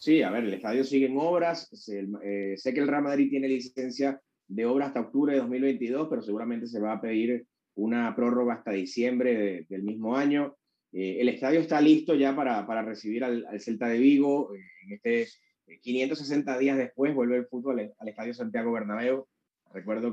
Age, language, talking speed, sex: 20-39, Spanish, 180 wpm, male